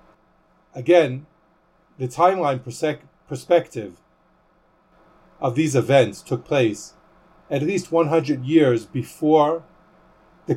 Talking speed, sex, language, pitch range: 85 wpm, male, English, 125-160 Hz